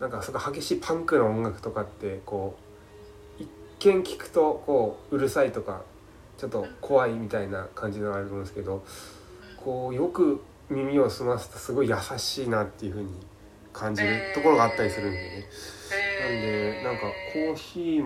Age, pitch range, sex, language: 20-39, 100-135 Hz, male, Japanese